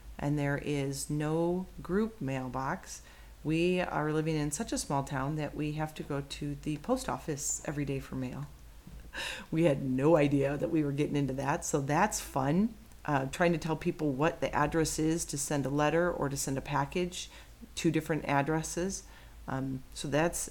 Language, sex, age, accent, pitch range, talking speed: English, female, 40-59, American, 140-170 Hz, 185 wpm